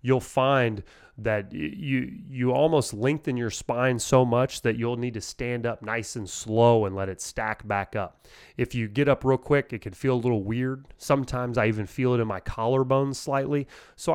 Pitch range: 110-130 Hz